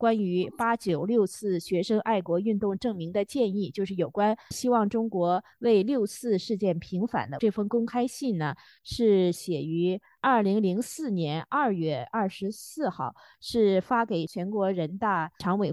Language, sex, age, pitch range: Chinese, female, 20-39, 175-225 Hz